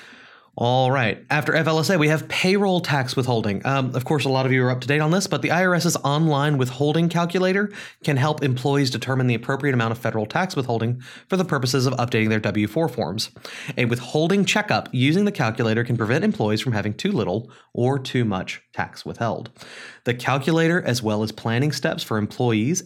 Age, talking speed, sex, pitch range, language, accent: 30-49, 190 wpm, male, 115-160 Hz, English, American